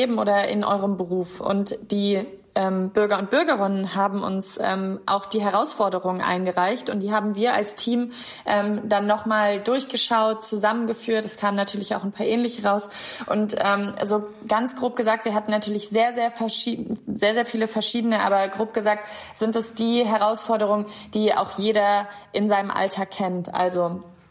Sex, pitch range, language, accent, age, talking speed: female, 195-220 Hz, German, German, 20-39, 170 wpm